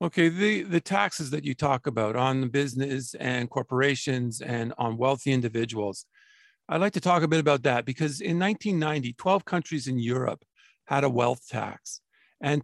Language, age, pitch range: English, 50-69, 130-165 Hz